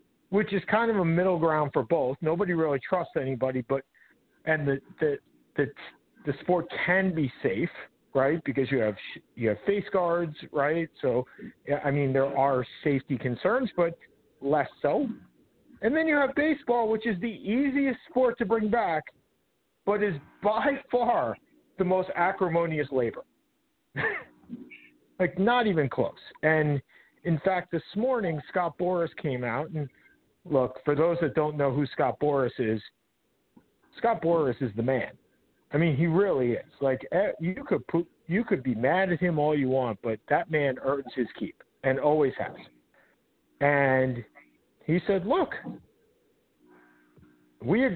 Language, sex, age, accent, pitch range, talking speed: English, male, 50-69, American, 130-190 Hz, 155 wpm